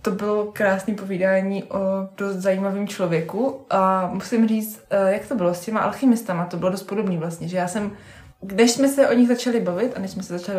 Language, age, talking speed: Czech, 20-39, 210 wpm